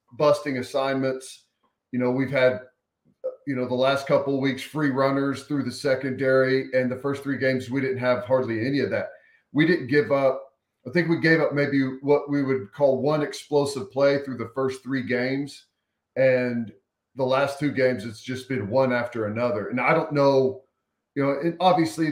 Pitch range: 130-145 Hz